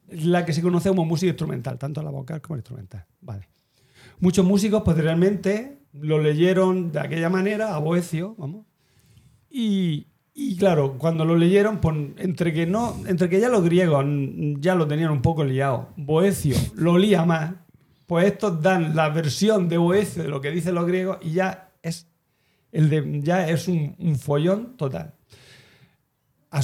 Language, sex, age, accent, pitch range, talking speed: Spanish, male, 50-69, Spanish, 140-180 Hz, 170 wpm